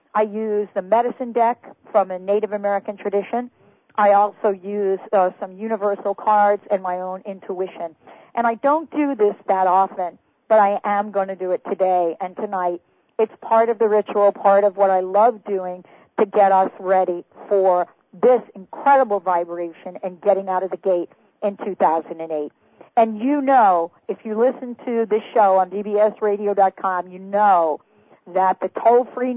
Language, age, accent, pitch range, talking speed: English, 50-69, American, 185-230 Hz, 170 wpm